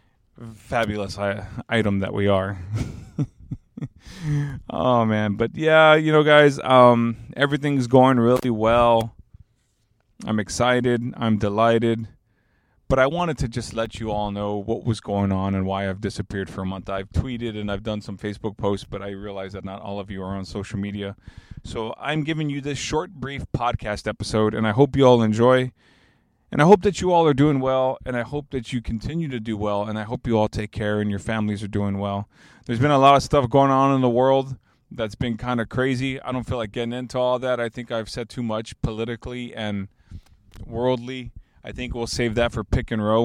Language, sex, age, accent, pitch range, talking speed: English, male, 30-49, American, 105-130 Hz, 205 wpm